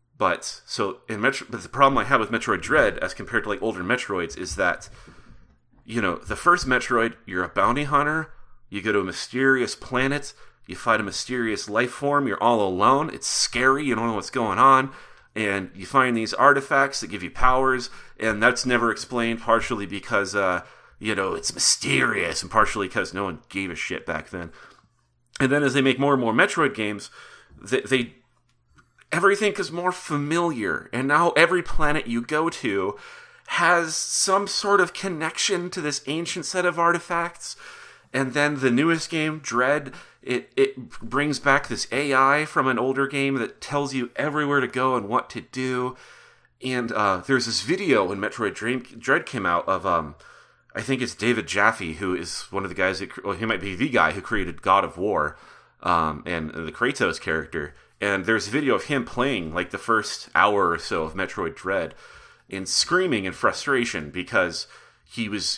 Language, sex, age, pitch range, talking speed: English, male, 30-49, 110-145 Hz, 190 wpm